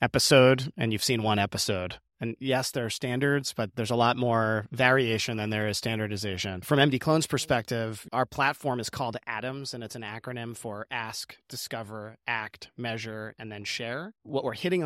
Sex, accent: male, American